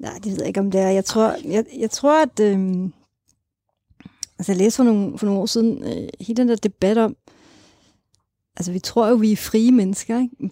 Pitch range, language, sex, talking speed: 205-245 Hz, Danish, female, 230 wpm